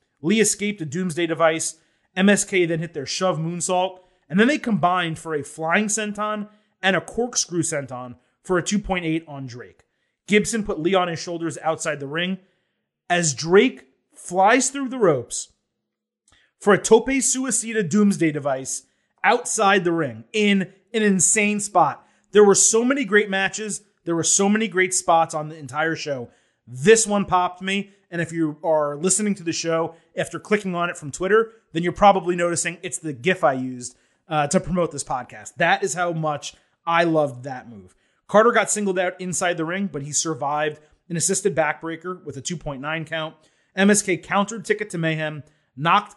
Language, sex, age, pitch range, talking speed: English, male, 30-49, 160-205 Hz, 175 wpm